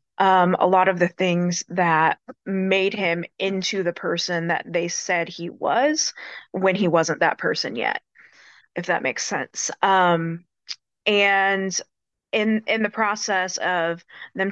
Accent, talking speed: American, 145 wpm